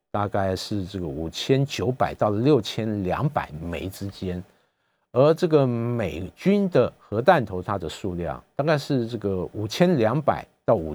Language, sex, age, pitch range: Chinese, male, 50-69, 95-140 Hz